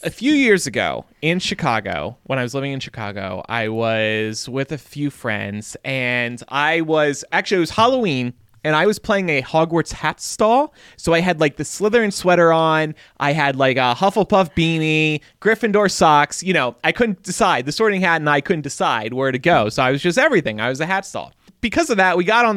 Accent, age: American, 30-49